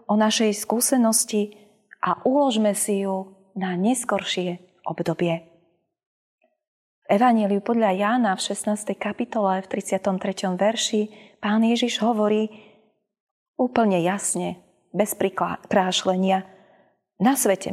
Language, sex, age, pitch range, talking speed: Slovak, female, 20-39, 190-240 Hz, 100 wpm